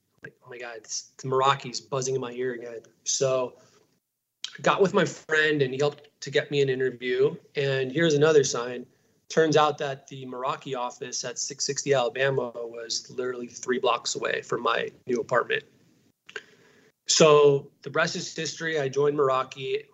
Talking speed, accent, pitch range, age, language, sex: 170 wpm, American, 125-150 Hz, 20-39, English, male